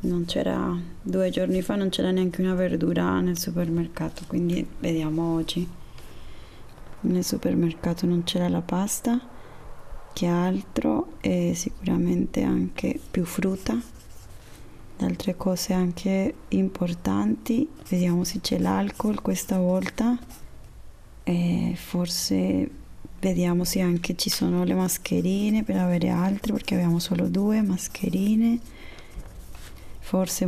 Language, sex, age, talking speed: Italian, female, 20-39, 110 wpm